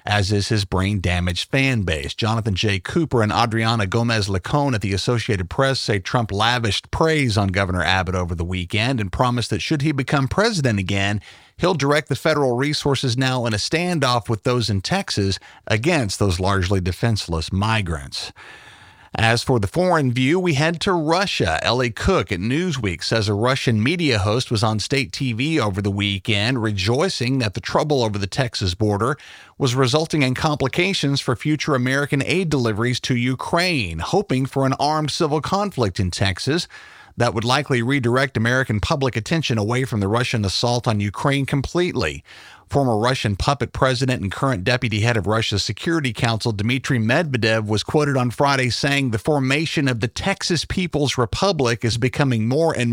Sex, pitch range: male, 105-145 Hz